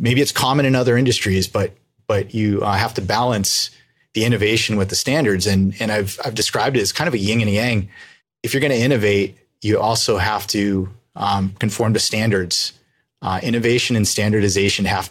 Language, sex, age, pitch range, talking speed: English, male, 30-49, 100-115 Hz, 200 wpm